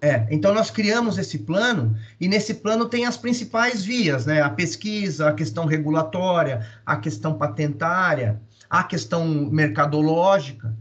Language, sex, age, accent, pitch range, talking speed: Portuguese, male, 30-49, Brazilian, 120-160 Hz, 135 wpm